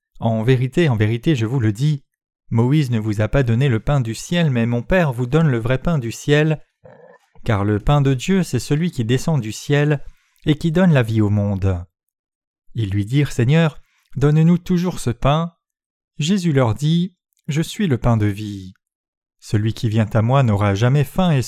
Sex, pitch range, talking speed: male, 115-160 Hz, 200 wpm